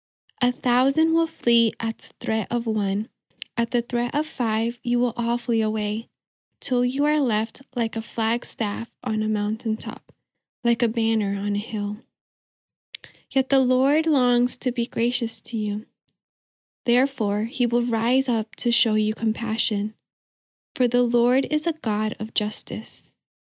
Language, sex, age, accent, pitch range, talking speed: English, female, 10-29, American, 220-255 Hz, 160 wpm